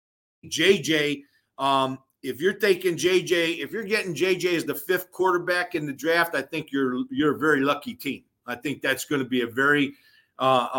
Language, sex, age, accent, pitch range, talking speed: English, male, 50-69, American, 140-175 Hz, 190 wpm